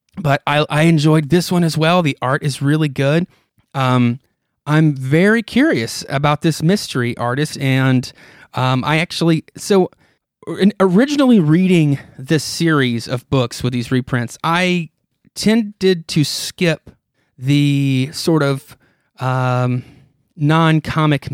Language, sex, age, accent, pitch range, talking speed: English, male, 30-49, American, 130-165 Hz, 125 wpm